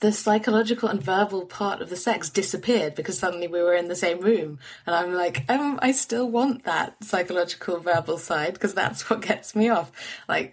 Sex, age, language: female, 20-39, English